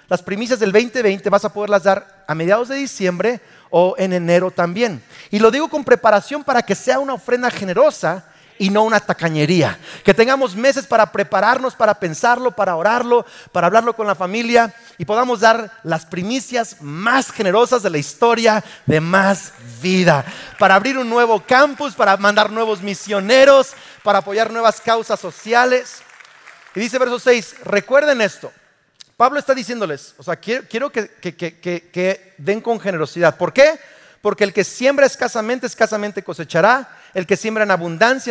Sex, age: male, 40-59